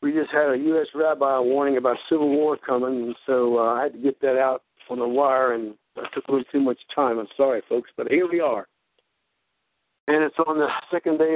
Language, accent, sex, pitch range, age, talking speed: English, American, male, 145-175 Hz, 60-79, 240 wpm